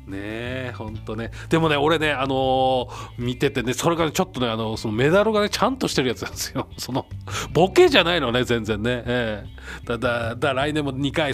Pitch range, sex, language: 110-155 Hz, male, Japanese